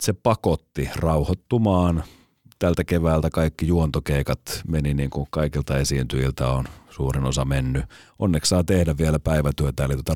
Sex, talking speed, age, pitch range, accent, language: male, 135 wpm, 30-49, 70-80 Hz, native, Finnish